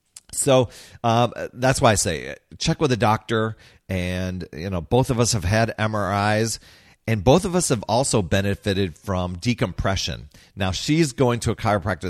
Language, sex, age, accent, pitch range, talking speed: English, male, 40-59, American, 90-110 Hz, 170 wpm